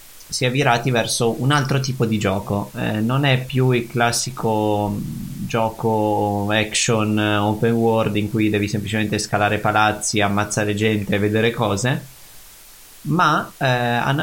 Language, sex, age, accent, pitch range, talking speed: Italian, male, 20-39, native, 105-125 Hz, 140 wpm